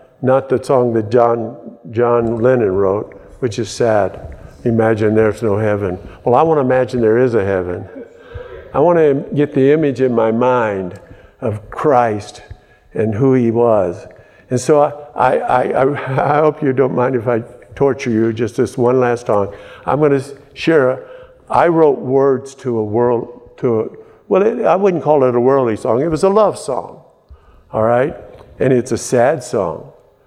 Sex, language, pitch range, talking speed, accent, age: male, English, 115-135 Hz, 180 wpm, American, 60-79